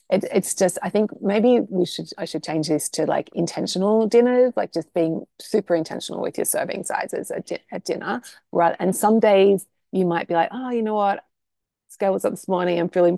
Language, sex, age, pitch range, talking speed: English, female, 30-49, 170-215 Hz, 220 wpm